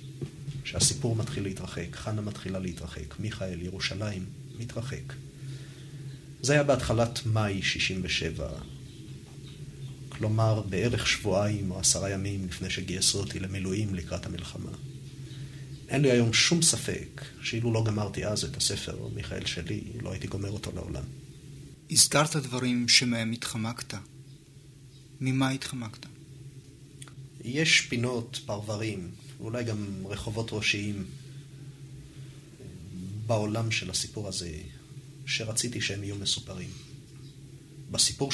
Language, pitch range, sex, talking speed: Hebrew, 105-135 Hz, male, 105 wpm